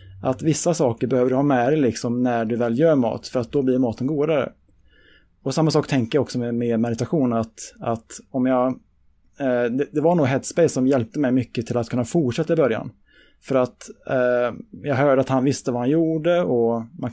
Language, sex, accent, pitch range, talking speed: Swedish, male, Norwegian, 120-145 Hz, 210 wpm